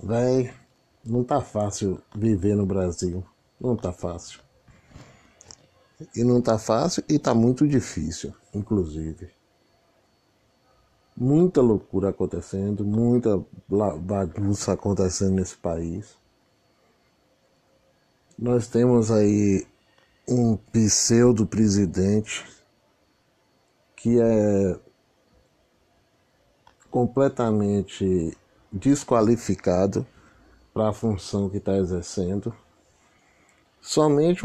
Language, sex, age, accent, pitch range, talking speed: Portuguese, male, 60-79, Brazilian, 95-120 Hz, 75 wpm